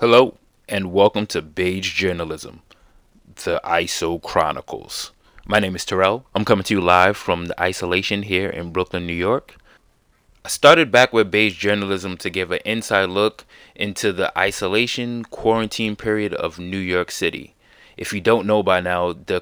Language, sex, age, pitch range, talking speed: English, male, 20-39, 95-120 Hz, 165 wpm